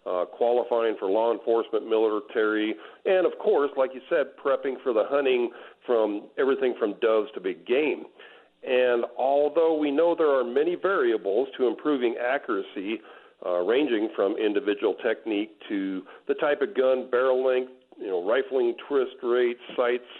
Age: 50-69